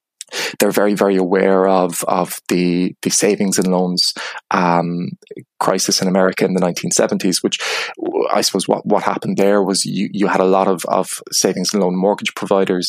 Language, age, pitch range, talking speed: English, 20-39, 90-100 Hz, 175 wpm